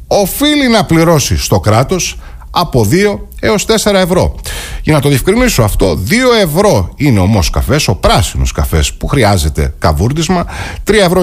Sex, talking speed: male, 150 wpm